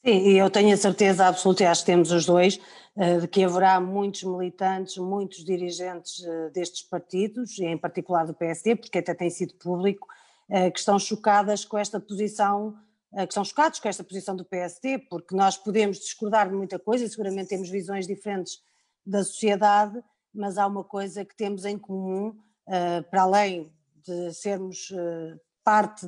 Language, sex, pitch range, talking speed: Portuguese, female, 175-200 Hz, 165 wpm